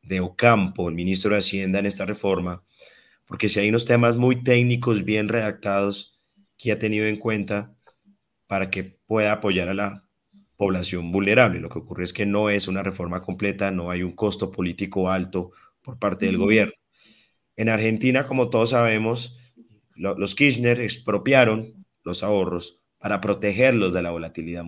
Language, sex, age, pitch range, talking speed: Spanish, male, 30-49, 95-115 Hz, 165 wpm